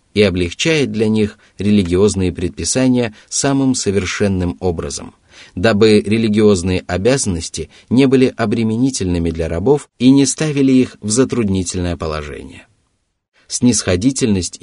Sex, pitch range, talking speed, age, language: male, 95-125 Hz, 105 wpm, 30-49, Russian